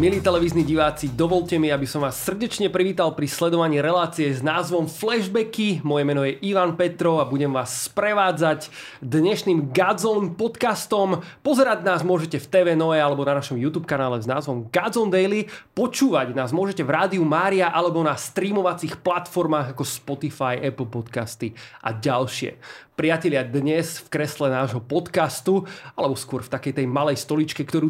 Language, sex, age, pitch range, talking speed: Slovak, male, 30-49, 145-185 Hz, 155 wpm